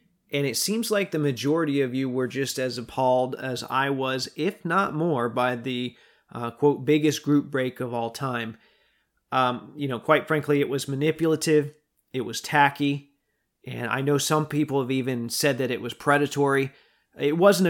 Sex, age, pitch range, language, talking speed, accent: male, 40-59, 130-155 Hz, English, 180 wpm, American